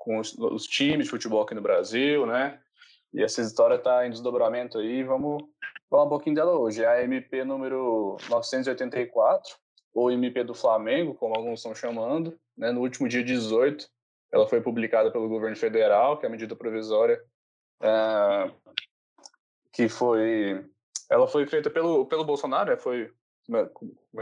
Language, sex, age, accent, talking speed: Portuguese, male, 10-29, Brazilian, 155 wpm